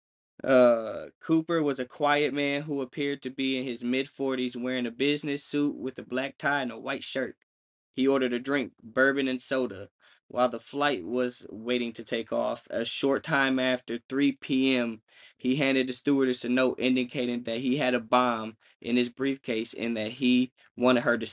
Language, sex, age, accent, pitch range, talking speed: English, male, 20-39, American, 120-140 Hz, 190 wpm